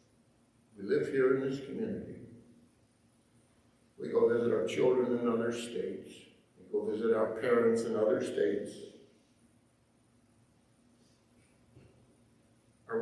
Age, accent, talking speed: 60-79, American, 100 wpm